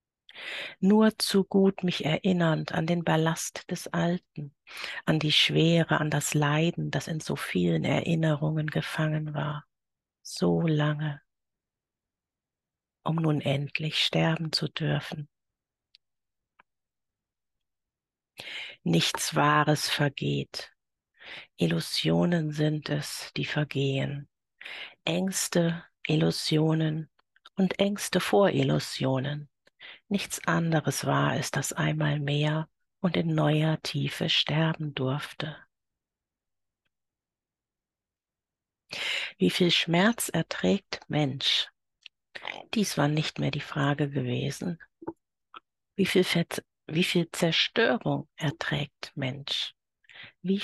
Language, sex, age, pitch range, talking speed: German, female, 50-69, 145-175 Hz, 95 wpm